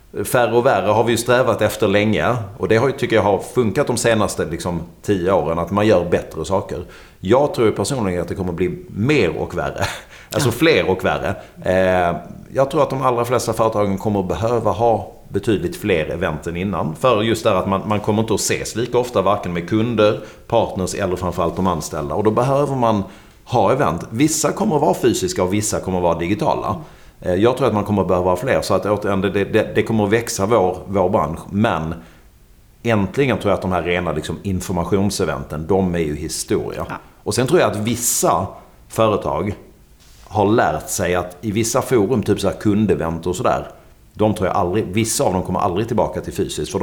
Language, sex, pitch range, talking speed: Swedish, male, 90-110 Hz, 195 wpm